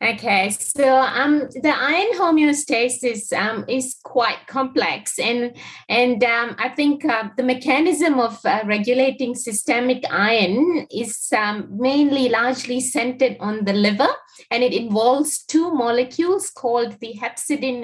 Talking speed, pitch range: 130 wpm, 220-280 Hz